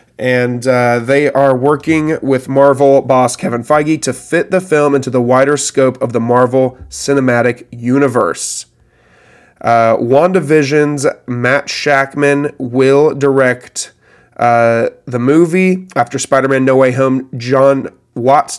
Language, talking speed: English, 125 wpm